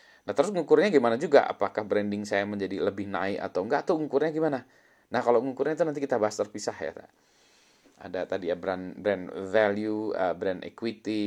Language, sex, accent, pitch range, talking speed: Indonesian, male, native, 105-150 Hz, 175 wpm